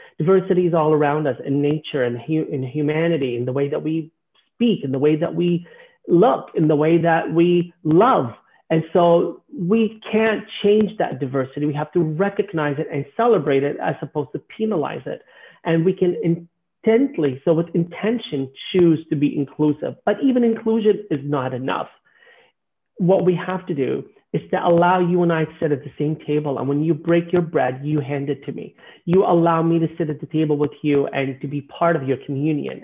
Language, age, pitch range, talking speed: English, 40-59, 150-175 Hz, 200 wpm